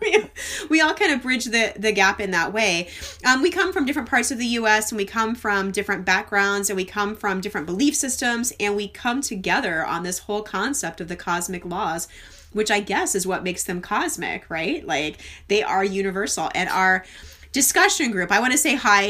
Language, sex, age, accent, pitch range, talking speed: English, female, 30-49, American, 180-225 Hz, 210 wpm